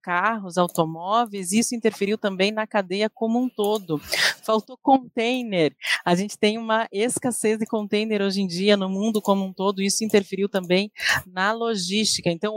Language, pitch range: Portuguese, 195-230 Hz